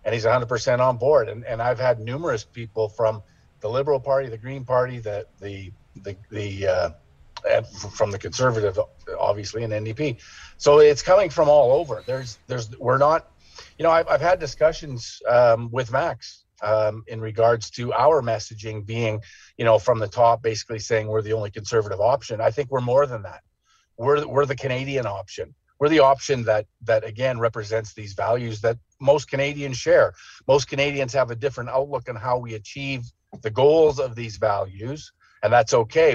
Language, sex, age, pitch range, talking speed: English, male, 40-59, 110-130 Hz, 185 wpm